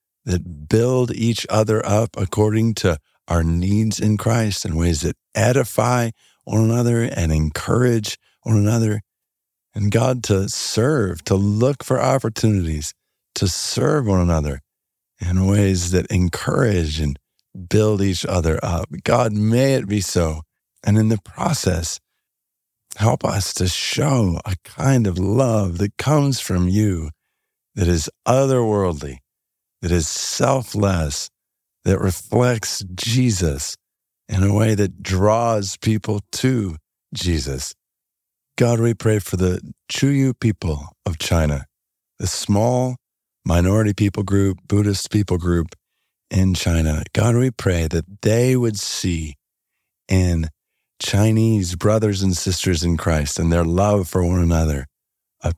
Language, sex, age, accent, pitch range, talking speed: English, male, 50-69, American, 85-110 Hz, 130 wpm